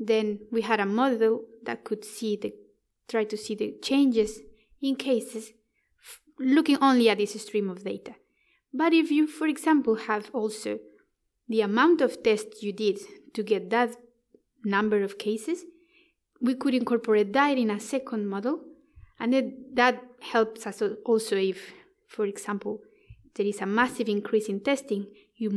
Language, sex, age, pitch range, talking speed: English, female, 20-39, 205-255 Hz, 160 wpm